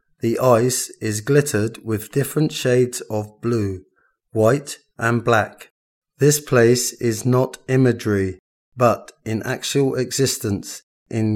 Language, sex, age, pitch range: Thai, male, 30-49, 110-130 Hz